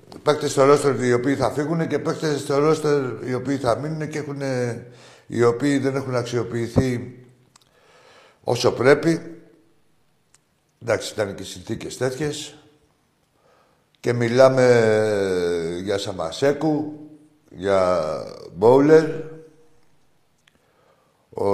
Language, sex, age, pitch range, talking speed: Greek, male, 60-79, 105-150 Hz, 100 wpm